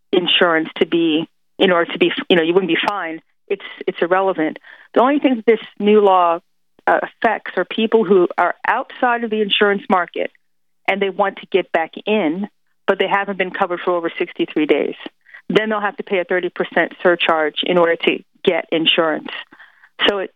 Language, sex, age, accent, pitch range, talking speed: English, female, 40-59, American, 175-210 Hz, 185 wpm